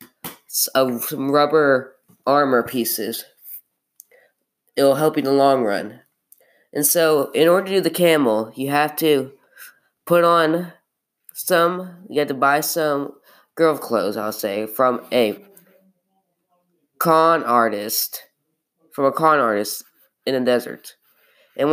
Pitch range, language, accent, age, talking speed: 135-170 Hz, English, American, 20-39, 135 wpm